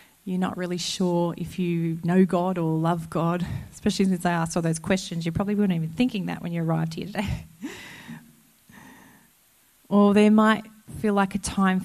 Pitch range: 170-200 Hz